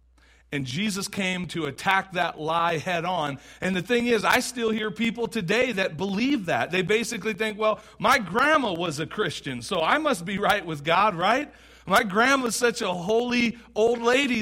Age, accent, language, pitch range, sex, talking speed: 40-59, American, English, 160-225 Hz, male, 185 wpm